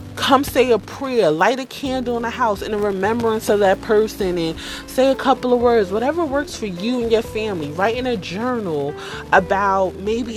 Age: 30-49